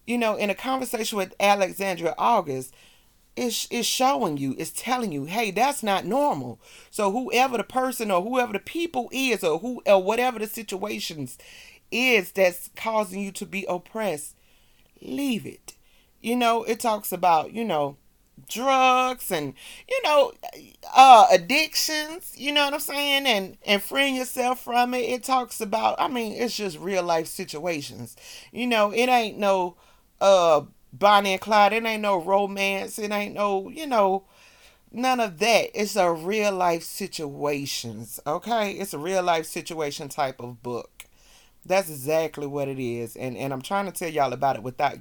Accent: American